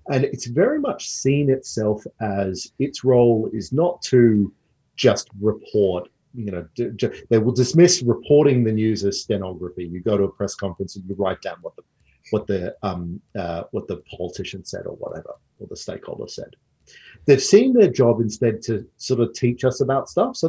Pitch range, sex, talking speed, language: 100-135 Hz, male, 185 wpm, English